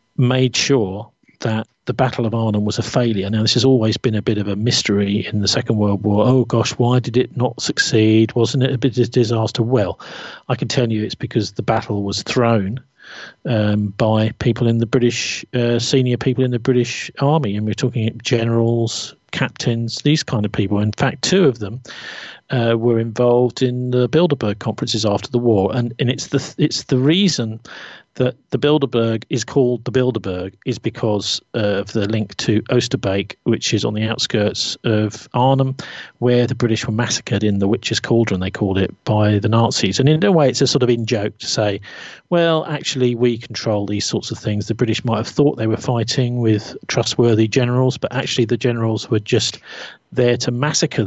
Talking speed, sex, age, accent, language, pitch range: 200 wpm, male, 40-59, British, English, 110-130 Hz